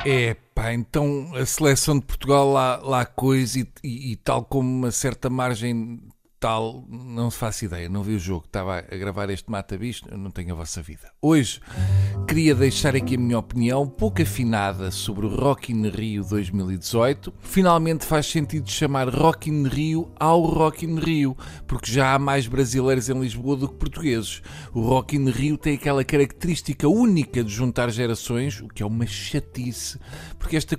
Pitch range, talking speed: 115-145 Hz, 175 wpm